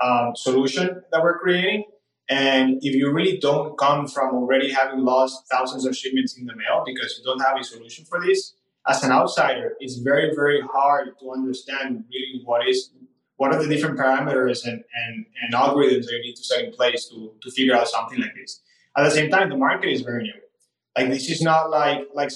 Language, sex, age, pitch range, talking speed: English, male, 20-39, 130-160 Hz, 210 wpm